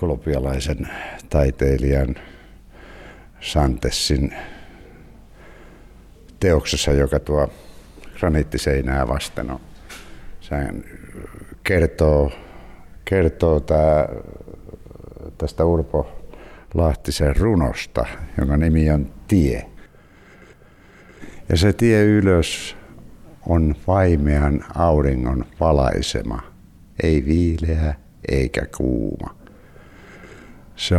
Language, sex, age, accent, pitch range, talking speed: Finnish, male, 60-79, native, 70-85 Hz, 60 wpm